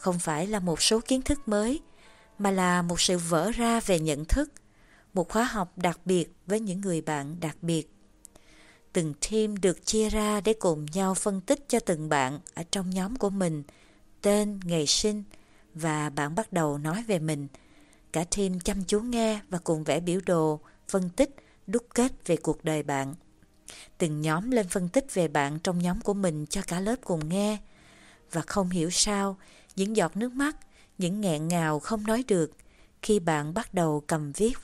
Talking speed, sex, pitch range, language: 190 wpm, female, 160-210 Hz, Vietnamese